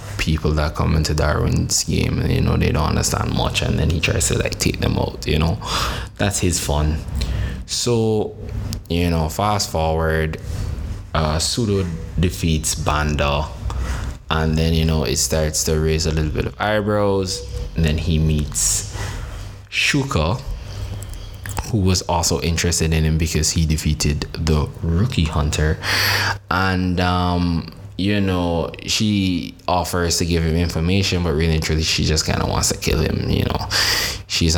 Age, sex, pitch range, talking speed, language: 20-39, male, 80-100 Hz, 160 wpm, English